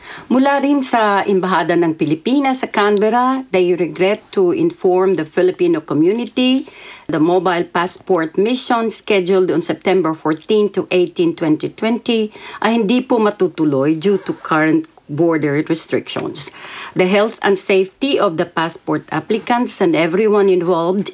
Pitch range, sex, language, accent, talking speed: 170-235 Hz, female, English, Filipino, 130 wpm